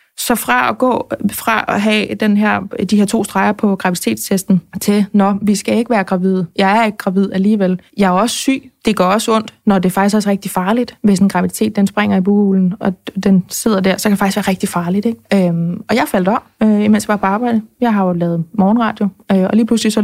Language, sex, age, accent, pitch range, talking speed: Danish, female, 20-39, native, 195-225 Hz, 245 wpm